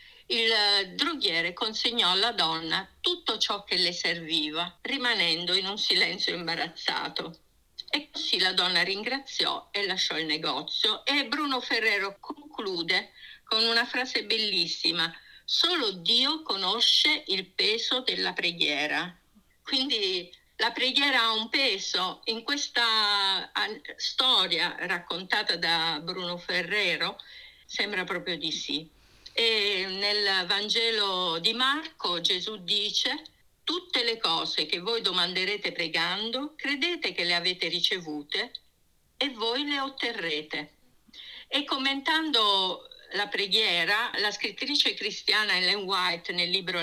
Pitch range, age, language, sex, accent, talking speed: 180-265 Hz, 50-69, Italian, female, native, 115 wpm